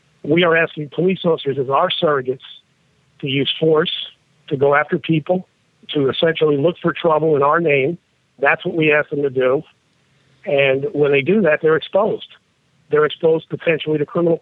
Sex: male